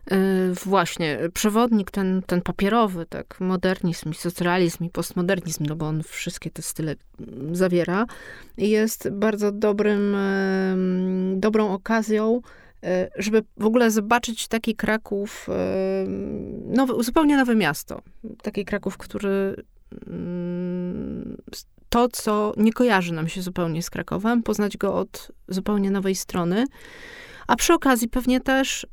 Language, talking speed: Polish, 115 wpm